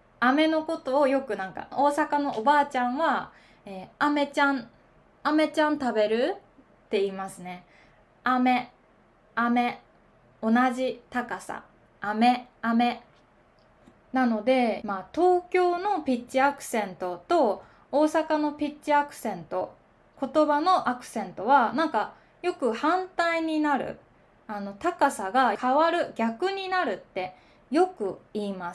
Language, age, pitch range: Japanese, 20-39, 220-300 Hz